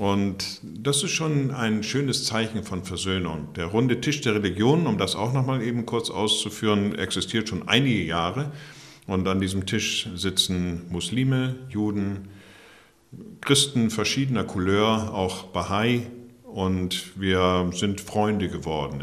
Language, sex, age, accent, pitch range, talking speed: German, male, 50-69, German, 90-115 Hz, 130 wpm